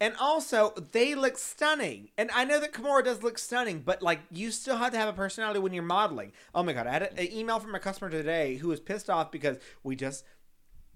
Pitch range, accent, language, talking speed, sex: 145-195 Hz, American, English, 240 wpm, male